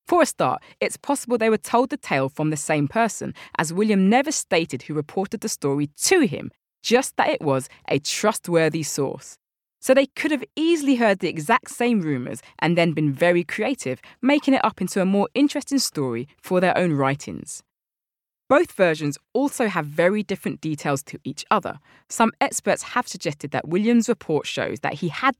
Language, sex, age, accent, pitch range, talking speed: English, female, 20-39, British, 145-245 Hz, 185 wpm